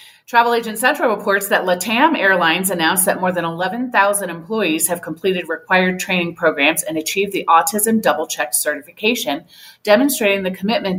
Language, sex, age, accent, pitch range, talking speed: English, female, 30-49, American, 160-215 Hz, 145 wpm